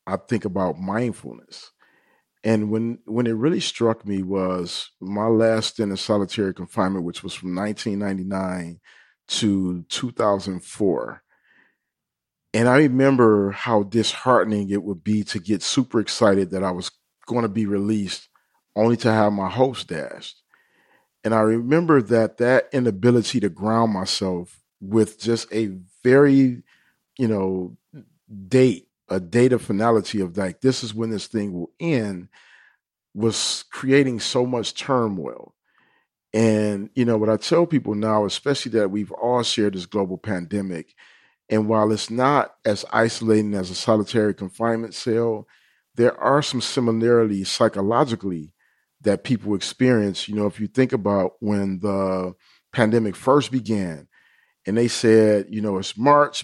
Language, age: English, 40-59